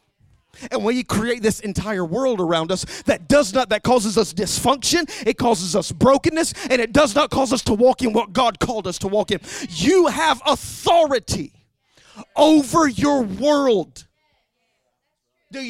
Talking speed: 165 wpm